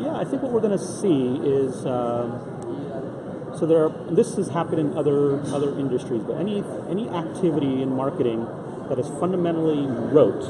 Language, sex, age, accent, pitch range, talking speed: English, male, 30-49, American, 125-155 Hz, 170 wpm